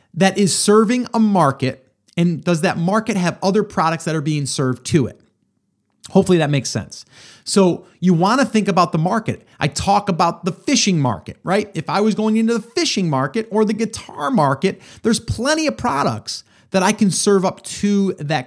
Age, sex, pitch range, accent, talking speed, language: 30-49, male, 150-200 Hz, American, 195 wpm, English